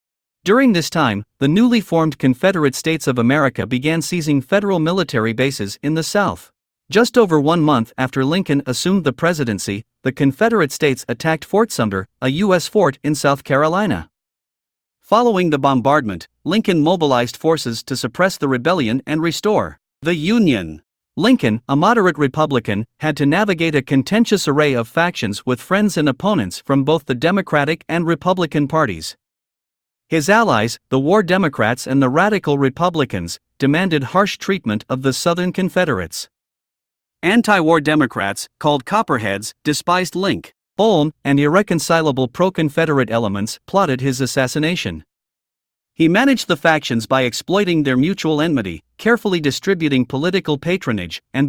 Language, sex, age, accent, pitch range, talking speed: English, male, 50-69, American, 130-175 Hz, 140 wpm